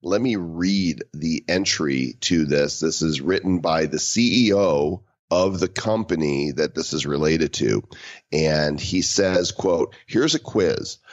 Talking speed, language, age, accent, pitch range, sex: 150 wpm, English, 40-59, American, 80-105 Hz, male